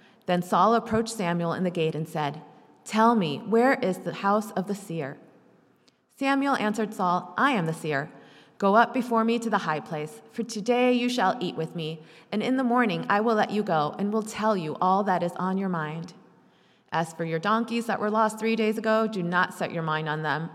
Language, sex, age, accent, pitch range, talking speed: English, female, 30-49, American, 175-230 Hz, 220 wpm